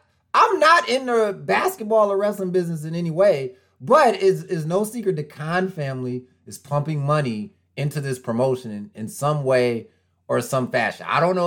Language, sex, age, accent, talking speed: English, male, 30-49, American, 185 wpm